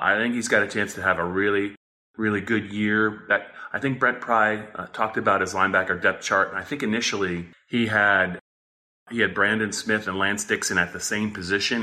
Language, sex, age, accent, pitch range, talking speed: English, male, 30-49, American, 90-105 Hz, 215 wpm